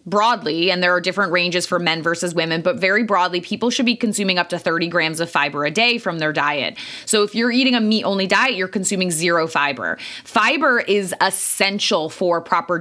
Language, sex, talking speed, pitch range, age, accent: English, female, 205 wpm, 180-235 Hz, 20-39, American